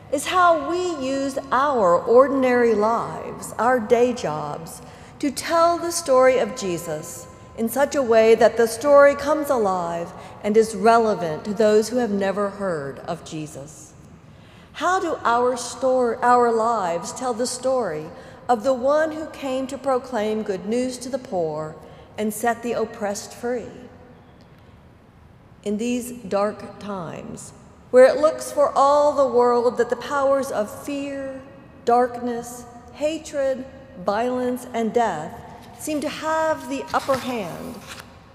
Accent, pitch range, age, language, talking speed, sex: American, 220-280 Hz, 50-69, English, 140 wpm, female